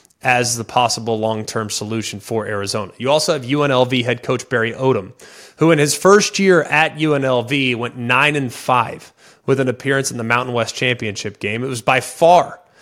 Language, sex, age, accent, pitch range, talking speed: English, male, 20-39, American, 120-140 Hz, 185 wpm